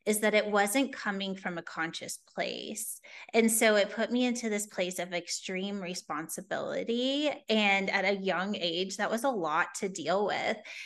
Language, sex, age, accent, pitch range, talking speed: English, female, 20-39, American, 180-220 Hz, 175 wpm